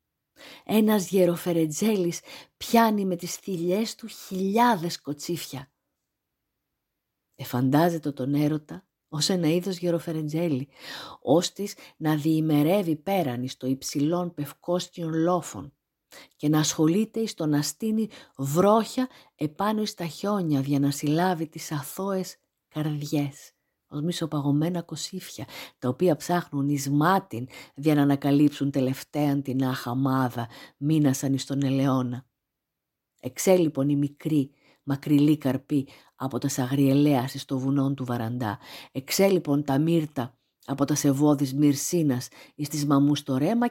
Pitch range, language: 140-180 Hz, Greek